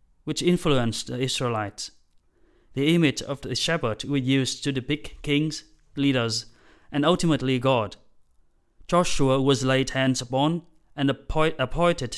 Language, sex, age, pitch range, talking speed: English, male, 30-49, 120-155 Hz, 125 wpm